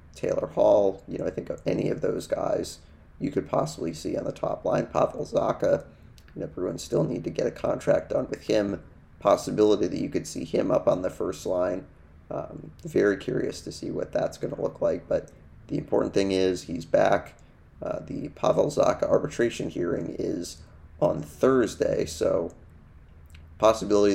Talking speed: 180 wpm